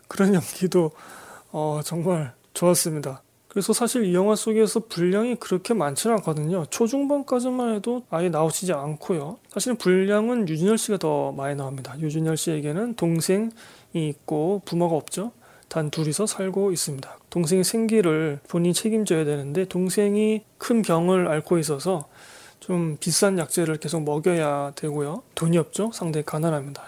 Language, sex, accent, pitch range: Korean, male, native, 160-210 Hz